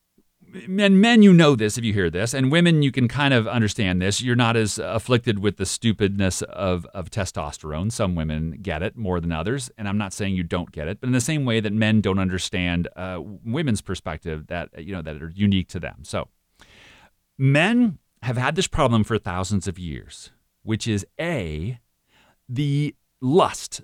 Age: 40-59